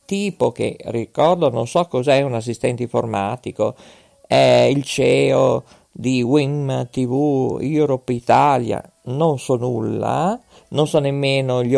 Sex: male